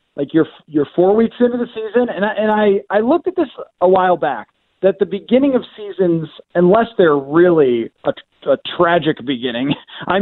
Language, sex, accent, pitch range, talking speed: English, male, American, 165-210 Hz, 190 wpm